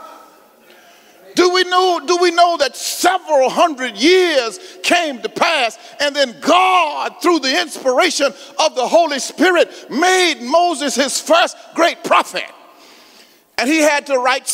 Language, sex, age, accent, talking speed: English, male, 40-59, American, 130 wpm